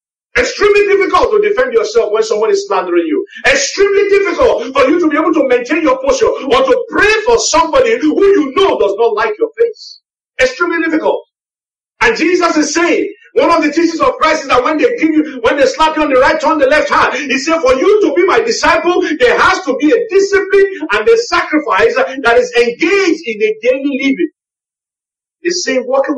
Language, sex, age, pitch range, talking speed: English, male, 50-69, 290-450 Hz, 205 wpm